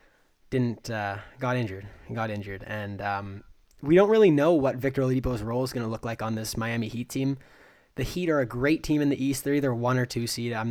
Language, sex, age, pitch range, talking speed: English, male, 20-39, 110-135 Hz, 235 wpm